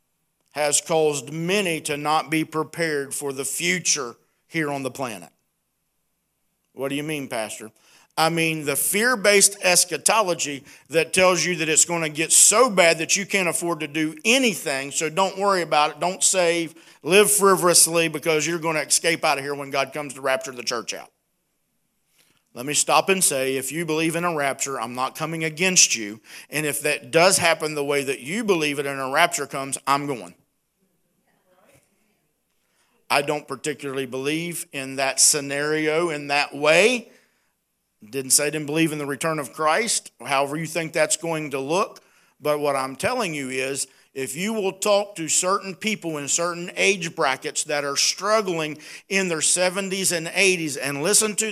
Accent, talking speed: American, 180 wpm